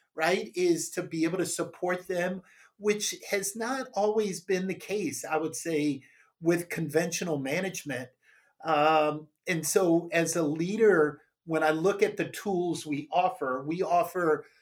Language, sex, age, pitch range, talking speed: English, male, 50-69, 155-180 Hz, 150 wpm